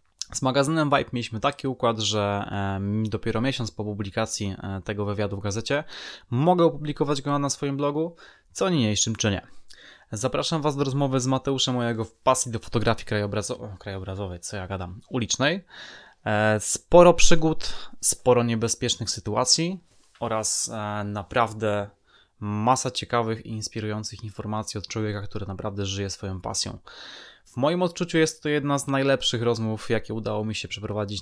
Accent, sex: native, male